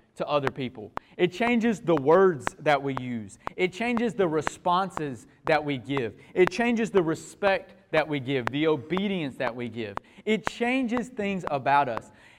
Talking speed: 165 wpm